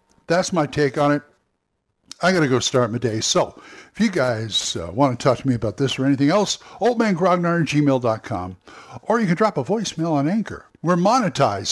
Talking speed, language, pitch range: 200 wpm, English, 125-165 Hz